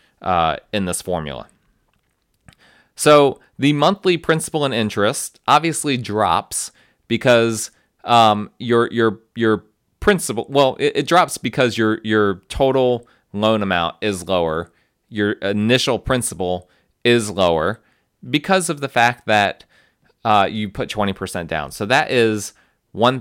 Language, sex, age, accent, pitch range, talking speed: English, male, 30-49, American, 100-130 Hz, 130 wpm